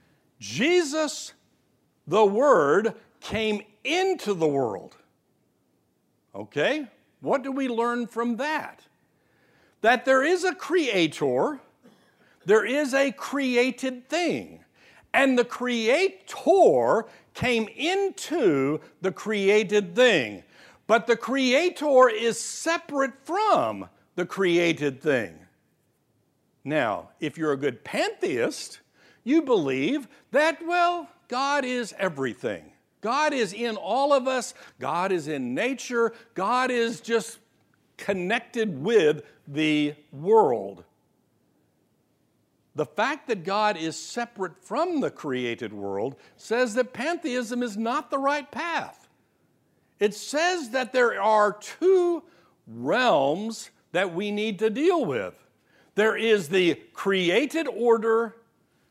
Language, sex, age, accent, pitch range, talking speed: English, male, 60-79, American, 205-295 Hz, 110 wpm